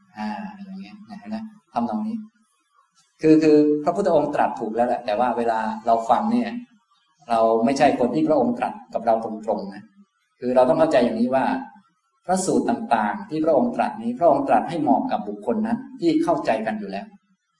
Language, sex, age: Thai, male, 20-39